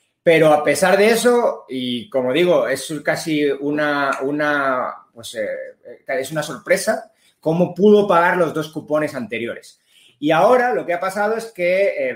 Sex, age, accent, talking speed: male, 30-49, Spanish, 165 wpm